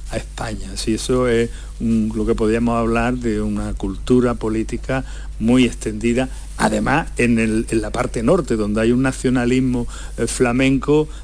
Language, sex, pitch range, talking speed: Spanish, male, 110-140 Hz, 140 wpm